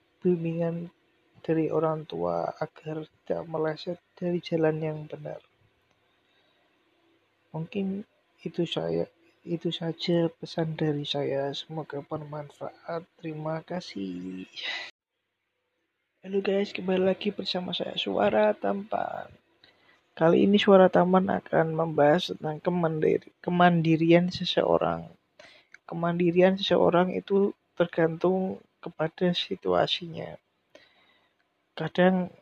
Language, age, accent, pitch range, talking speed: Indonesian, 20-39, native, 155-180 Hz, 90 wpm